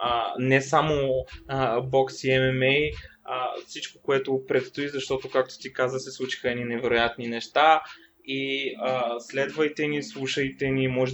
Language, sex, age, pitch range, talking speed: Bulgarian, male, 20-39, 120-135 Hz, 135 wpm